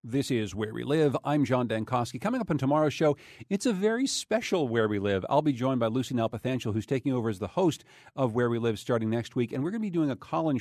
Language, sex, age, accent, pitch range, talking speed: English, male, 40-59, American, 115-150 Hz, 265 wpm